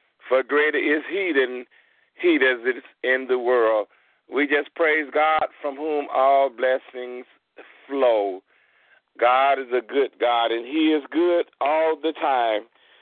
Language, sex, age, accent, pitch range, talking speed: English, male, 50-69, American, 120-145 Hz, 145 wpm